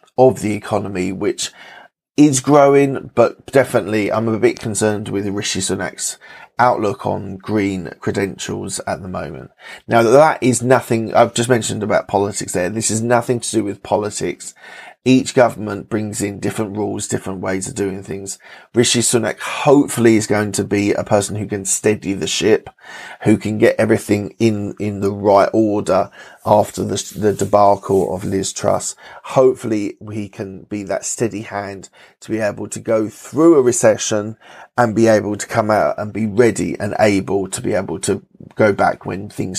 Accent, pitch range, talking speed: British, 100-115 Hz, 175 wpm